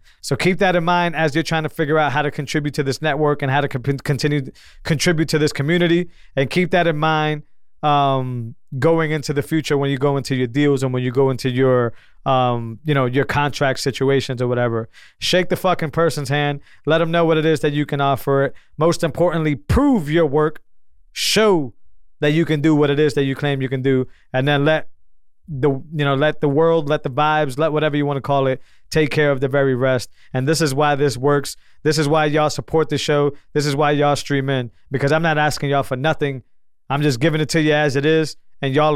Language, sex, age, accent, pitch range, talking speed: English, male, 20-39, American, 135-155 Hz, 235 wpm